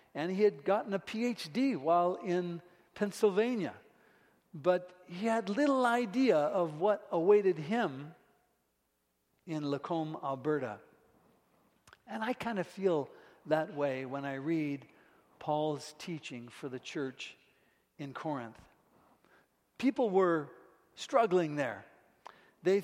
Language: English